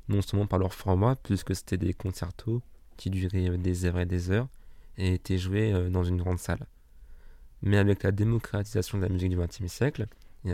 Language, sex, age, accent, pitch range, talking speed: French, male, 20-39, French, 90-105 Hz, 195 wpm